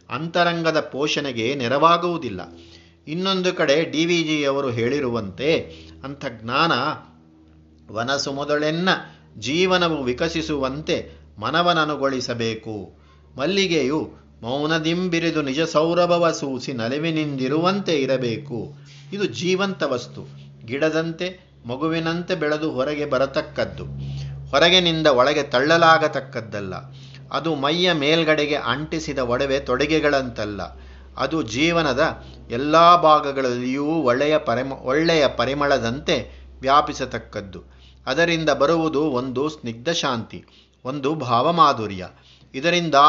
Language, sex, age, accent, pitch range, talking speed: Kannada, male, 50-69, native, 115-160 Hz, 75 wpm